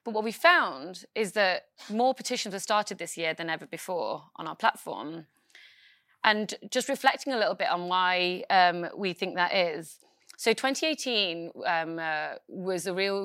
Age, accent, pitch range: 20-39, British, 175-215 Hz